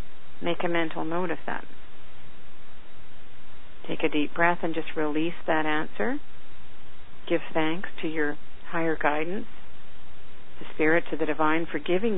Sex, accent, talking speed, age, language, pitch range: female, American, 140 wpm, 50-69, English, 160-180 Hz